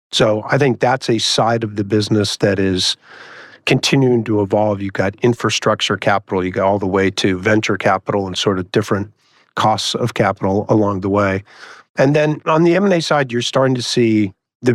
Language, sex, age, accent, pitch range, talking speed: English, male, 50-69, American, 105-125 Hz, 190 wpm